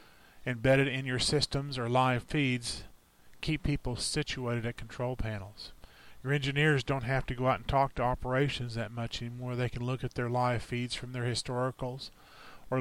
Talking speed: 180 wpm